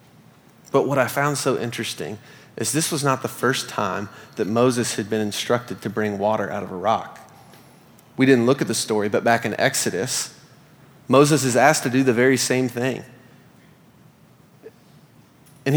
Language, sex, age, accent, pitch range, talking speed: English, male, 30-49, American, 115-145 Hz, 170 wpm